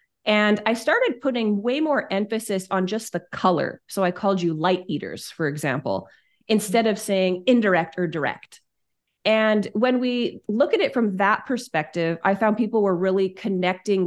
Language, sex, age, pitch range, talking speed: English, female, 30-49, 185-235 Hz, 170 wpm